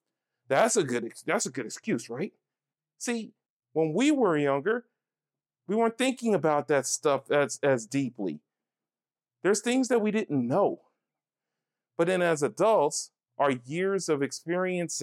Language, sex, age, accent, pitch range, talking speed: English, male, 40-59, American, 150-205 Hz, 145 wpm